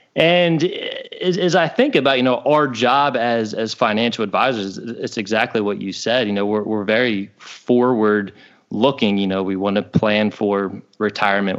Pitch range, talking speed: 100-120 Hz, 170 wpm